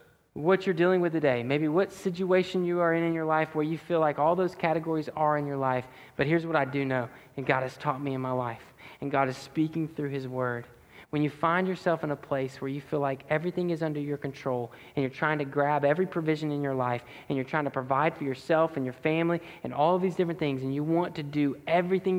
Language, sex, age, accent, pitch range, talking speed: English, male, 20-39, American, 150-210 Hz, 255 wpm